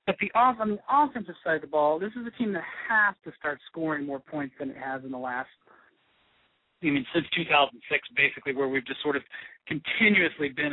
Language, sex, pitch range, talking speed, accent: English, male, 145-195 Hz, 220 wpm, American